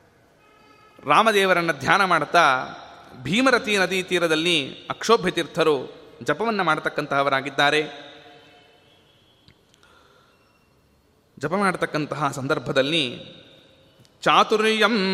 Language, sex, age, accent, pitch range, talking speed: Kannada, male, 30-49, native, 150-210 Hz, 50 wpm